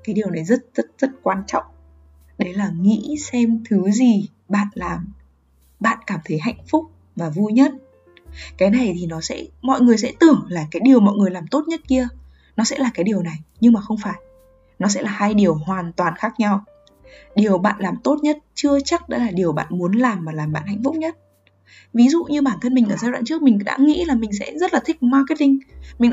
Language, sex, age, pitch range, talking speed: Vietnamese, female, 10-29, 180-255 Hz, 230 wpm